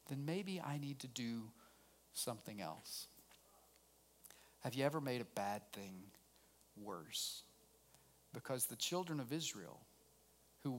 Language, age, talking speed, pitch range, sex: English, 40-59, 120 wpm, 125-165 Hz, male